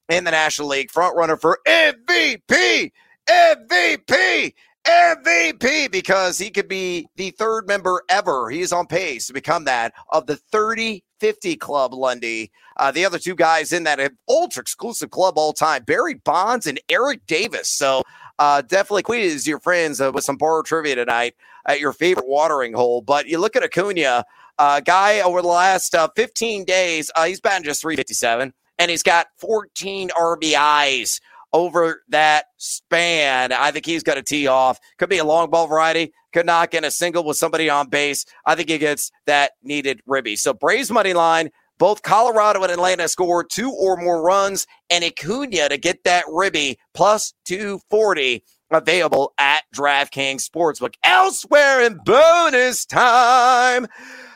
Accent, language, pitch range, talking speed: American, English, 150-215 Hz, 160 wpm